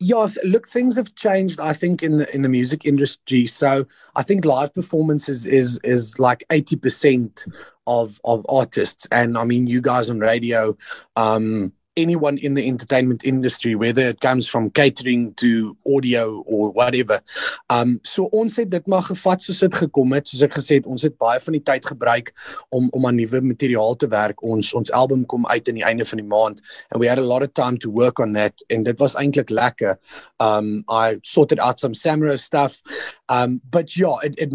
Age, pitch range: 30-49, 115-145 Hz